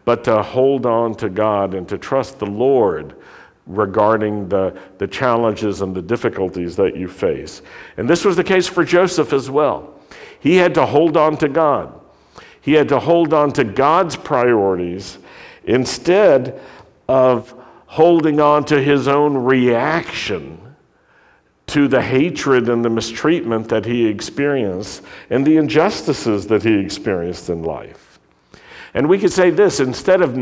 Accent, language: American, English